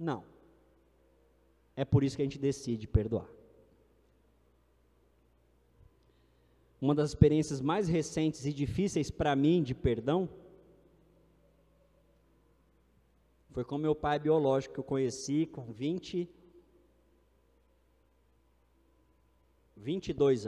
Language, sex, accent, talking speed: Portuguese, male, Brazilian, 90 wpm